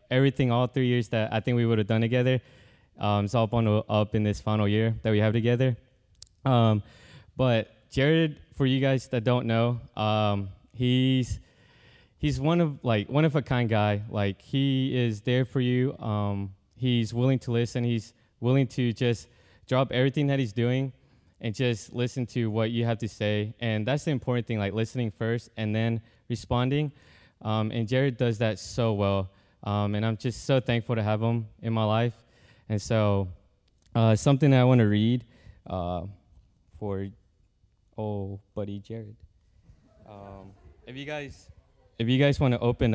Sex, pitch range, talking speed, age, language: male, 105-125 Hz, 175 wpm, 20-39, English